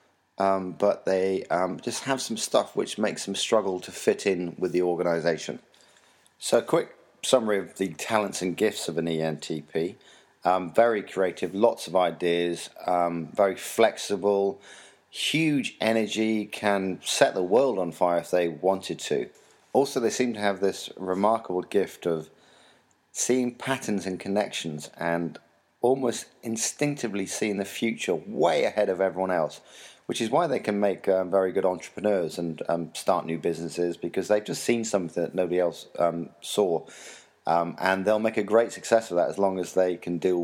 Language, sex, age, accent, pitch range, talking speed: English, male, 40-59, British, 85-105 Hz, 170 wpm